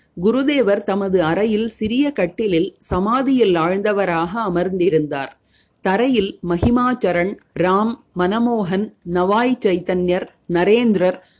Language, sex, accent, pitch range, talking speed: Tamil, female, native, 180-235 Hz, 80 wpm